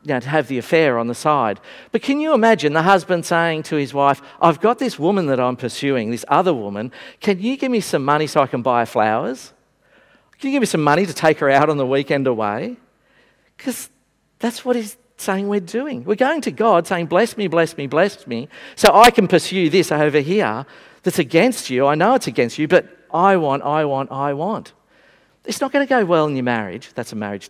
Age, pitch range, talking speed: 50-69, 120-195 Hz, 225 wpm